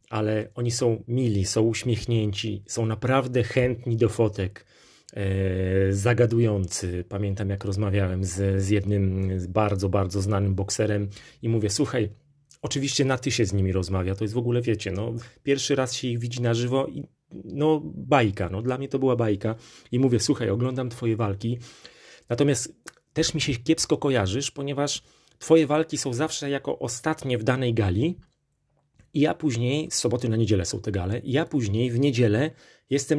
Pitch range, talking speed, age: 105-140 Hz, 165 wpm, 30-49